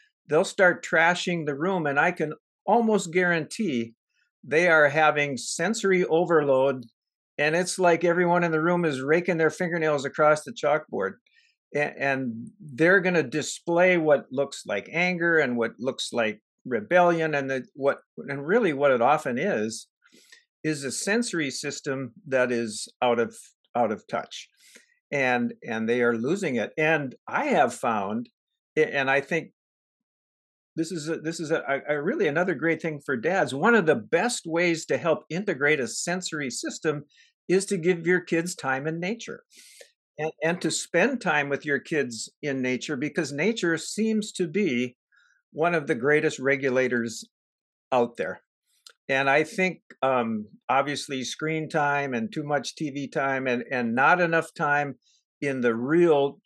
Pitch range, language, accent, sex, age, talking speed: 140-180 Hz, English, American, male, 50-69, 160 wpm